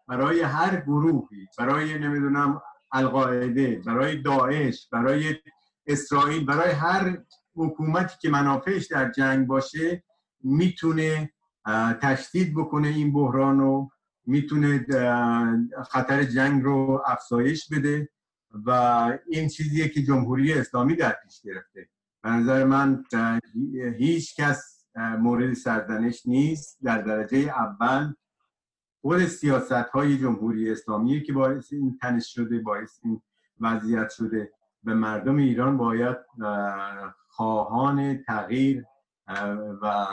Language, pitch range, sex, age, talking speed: Persian, 115-145 Hz, male, 50-69, 105 wpm